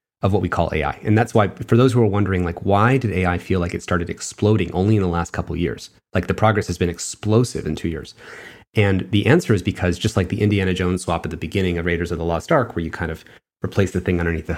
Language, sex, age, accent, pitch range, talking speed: English, male, 30-49, American, 90-105 Hz, 275 wpm